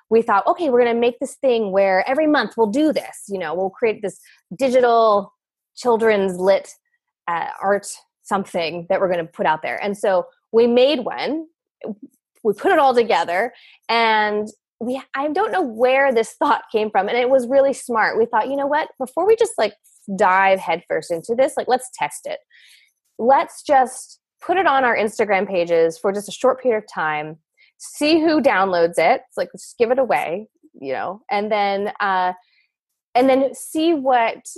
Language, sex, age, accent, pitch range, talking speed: English, female, 20-39, American, 205-270 Hz, 190 wpm